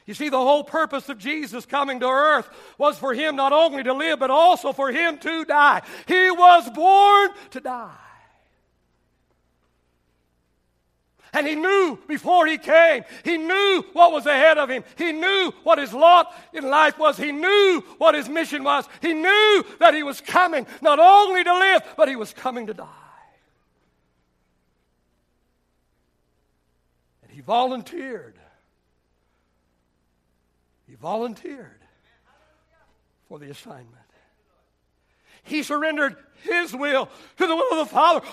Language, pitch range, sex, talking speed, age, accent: English, 210-335 Hz, male, 140 wpm, 60-79, American